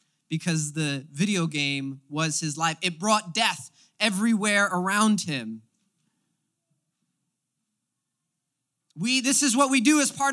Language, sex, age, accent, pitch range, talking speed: English, male, 20-39, American, 160-240 Hz, 120 wpm